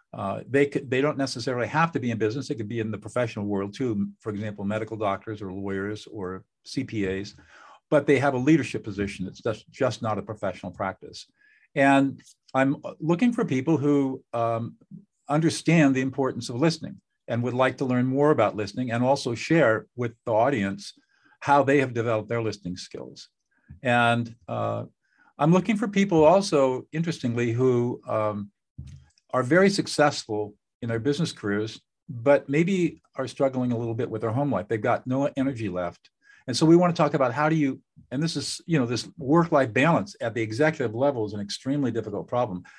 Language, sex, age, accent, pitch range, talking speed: English, male, 50-69, American, 110-145 Hz, 185 wpm